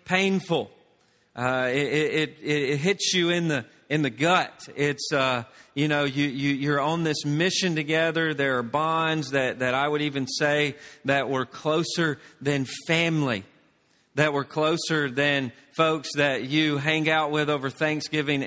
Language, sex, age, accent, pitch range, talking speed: English, male, 40-59, American, 140-155 Hz, 160 wpm